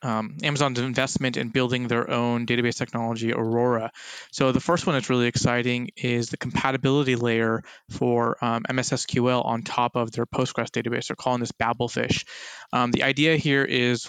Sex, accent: male, American